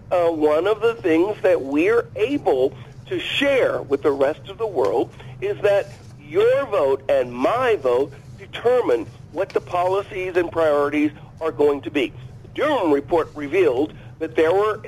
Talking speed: 160 wpm